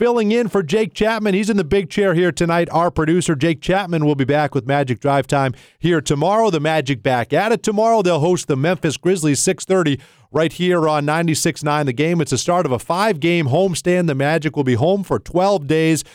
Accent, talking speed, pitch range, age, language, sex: American, 215 wpm, 140-185 Hz, 40-59, English, male